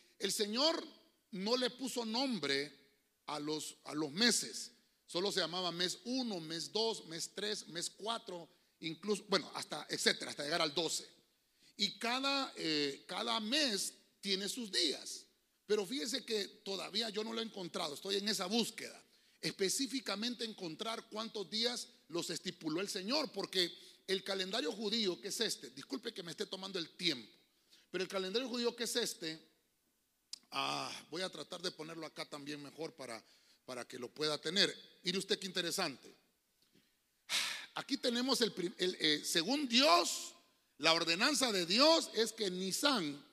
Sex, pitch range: male, 175-240 Hz